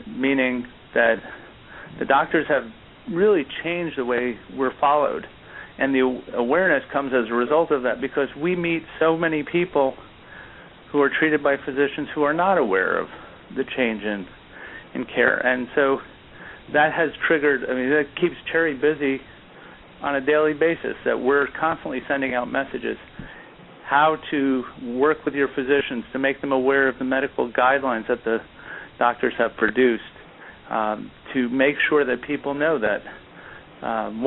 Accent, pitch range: American, 125-150 Hz